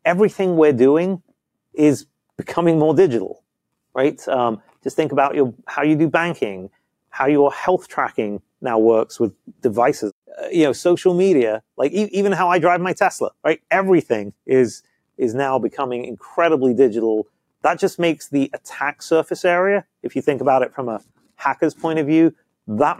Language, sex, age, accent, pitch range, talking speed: English, male, 30-49, British, 120-160 Hz, 165 wpm